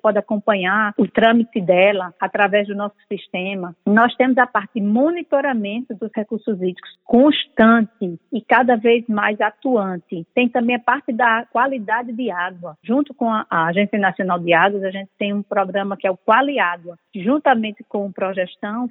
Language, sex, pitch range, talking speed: Portuguese, female, 205-245 Hz, 165 wpm